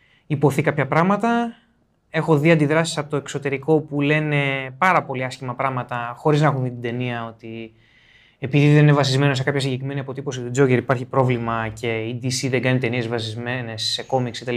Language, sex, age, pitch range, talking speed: Greek, male, 20-39, 130-185 Hz, 175 wpm